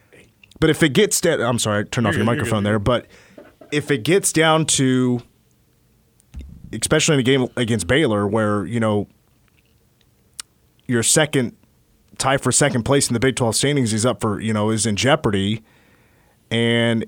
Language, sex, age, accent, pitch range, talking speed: English, male, 30-49, American, 115-155 Hz, 165 wpm